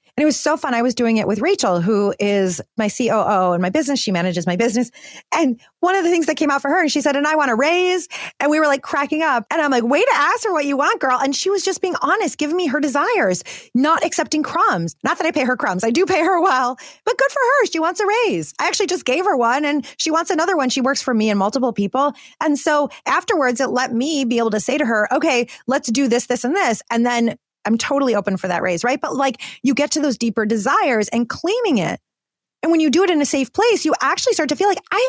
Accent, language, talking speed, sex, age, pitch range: American, English, 275 wpm, female, 30-49, 245-360 Hz